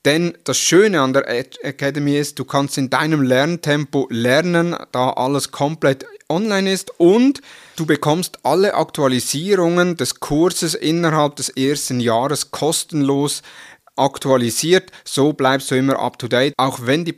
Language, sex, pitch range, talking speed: German, male, 130-160 Hz, 135 wpm